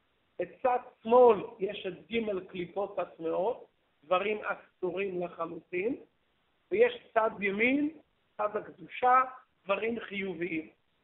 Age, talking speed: 50-69, 90 wpm